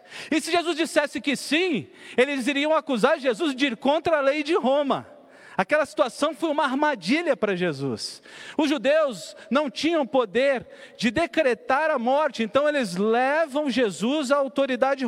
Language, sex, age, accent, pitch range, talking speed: Portuguese, male, 50-69, Brazilian, 230-300 Hz, 155 wpm